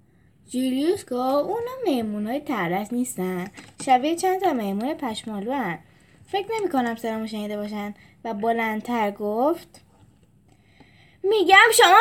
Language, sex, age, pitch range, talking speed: Persian, female, 10-29, 200-315 Hz, 115 wpm